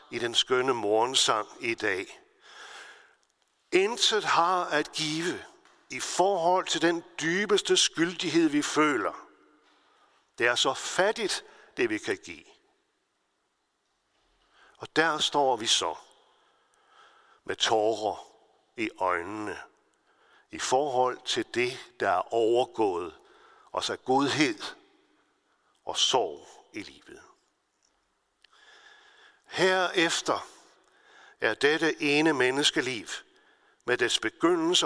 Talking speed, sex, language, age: 100 wpm, male, Danish, 60-79